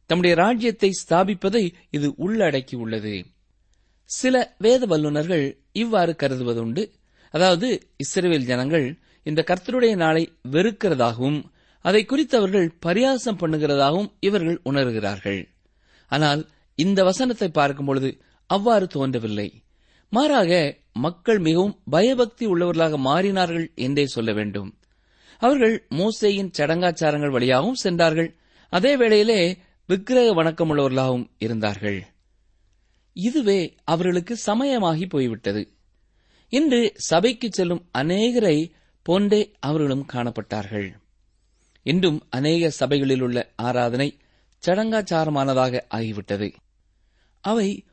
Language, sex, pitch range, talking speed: Tamil, male, 120-195 Hz, 85 wpm